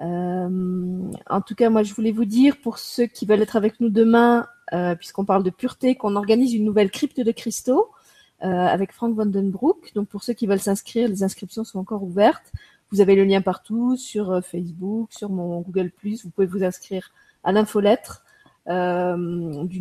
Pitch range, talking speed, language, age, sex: 185-230 Hz, 190 wpm, French, 30-49, female